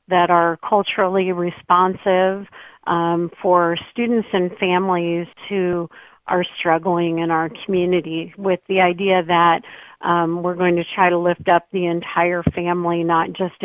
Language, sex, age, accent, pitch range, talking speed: English, female, 50-69, American, 170-185 Hz, 140 wpm